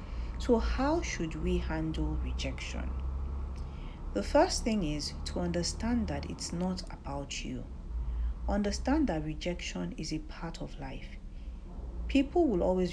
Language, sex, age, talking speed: English, female, 40-59, 130 wpm